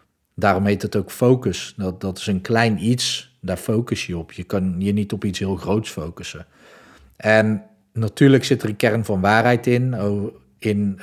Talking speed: 185 wpm